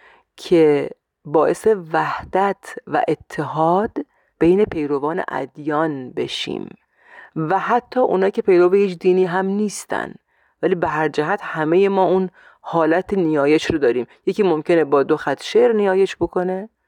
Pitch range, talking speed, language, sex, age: 155-210 Hz, 130 wpm, Persian, female, 30-49